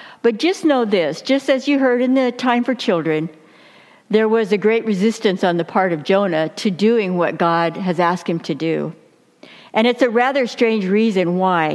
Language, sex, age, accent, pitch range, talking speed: English, female, 60-79, American, 190-255 Hz, 200 wpm